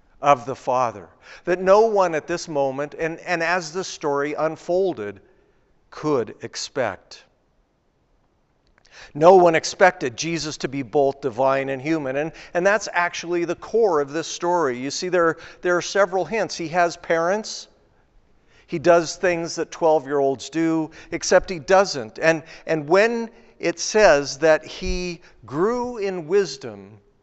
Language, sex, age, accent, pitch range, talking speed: English, male, 50-69, American, 145-180 Hz, 150 wpm